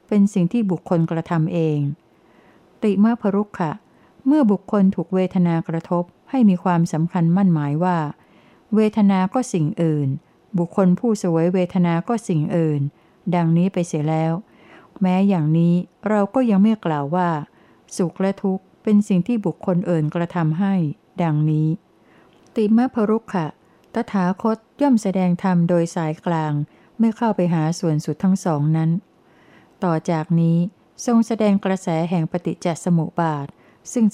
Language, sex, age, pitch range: Thai, female, 60-79, 165-195 Hz